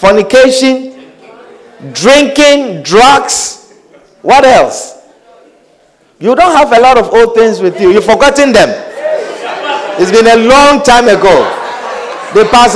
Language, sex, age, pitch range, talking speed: English, male, 50-69, 240-350 Hz, 120 wpm